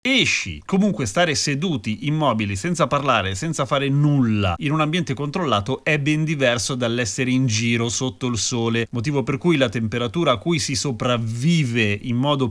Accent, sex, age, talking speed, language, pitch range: native, male, 30-49, 165 wpm, Italian, 125-165 Hz